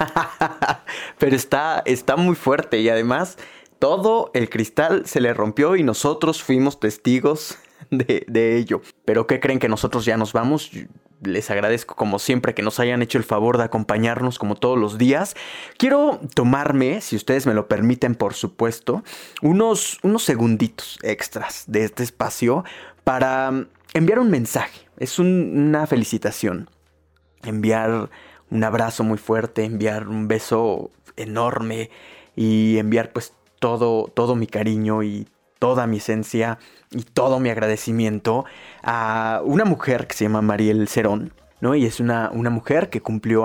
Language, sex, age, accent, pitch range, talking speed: Spanish, male, 20-39, Mexican, 110-130 Hz, 150 wpm